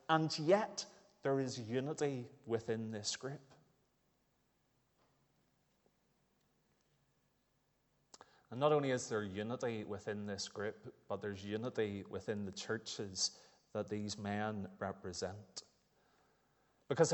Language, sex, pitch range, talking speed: English, male, 125-165 Hz, 100 wpm